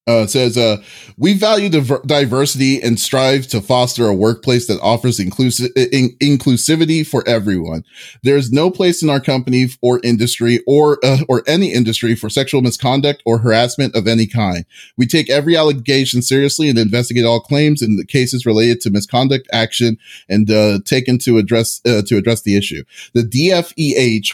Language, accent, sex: English, American, male